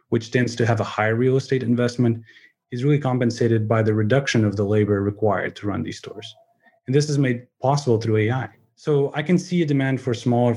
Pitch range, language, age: 110-140 Hz, English, 30-49